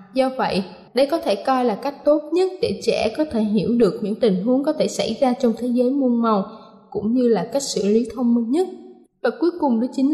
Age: 20-39